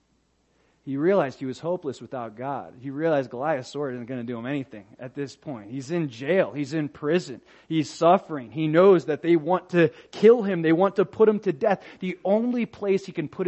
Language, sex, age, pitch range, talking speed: English, male, 30-49, 145-190 Hz, 220 wpm